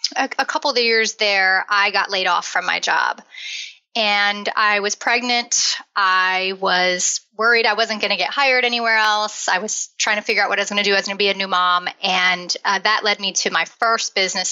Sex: female